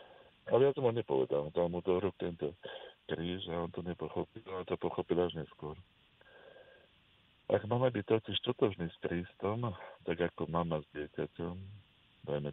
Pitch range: 85-95 Hz